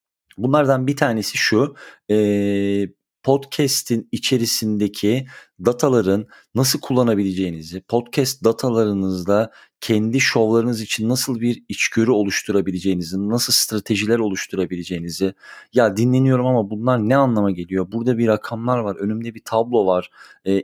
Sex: male